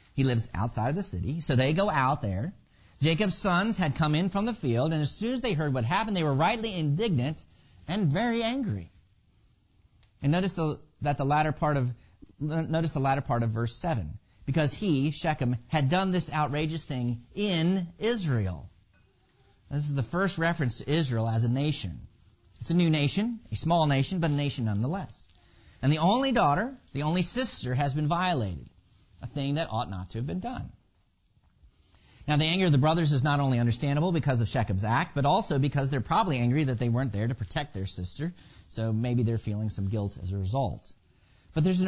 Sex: male